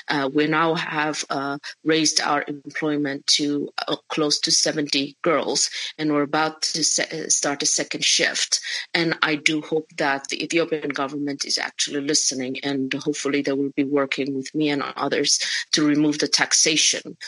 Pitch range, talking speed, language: 140-155 Hz, 165 wpm, English